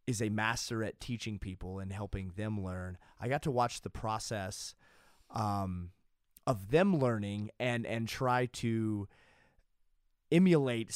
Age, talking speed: 30-49, 135 wpm